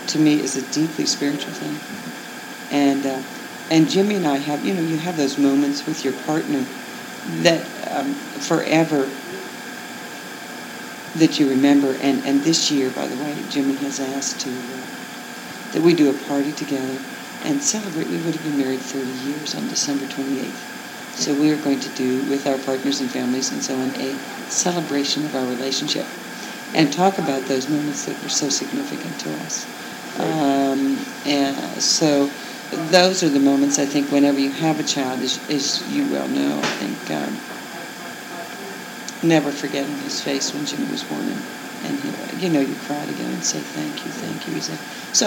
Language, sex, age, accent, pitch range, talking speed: English, female, 60-79, American, 140-180 Hz, 180 wpm